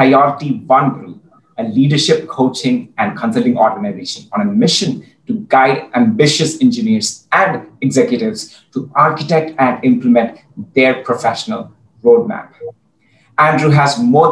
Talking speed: 115 wpm